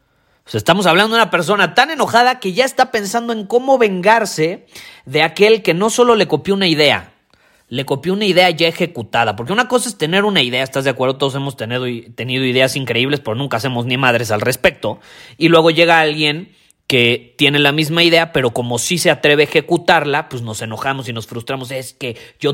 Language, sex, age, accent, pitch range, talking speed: Spanish, male, 30-49, Mexican, 120-165 Hz, 200 wpm